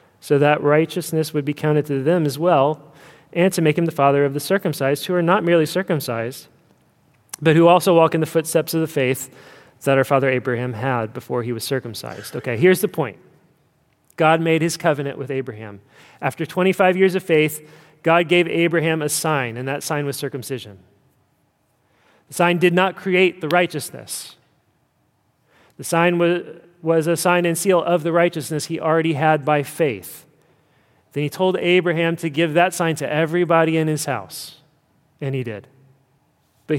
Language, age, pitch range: English, 30-49, 135-165 Hz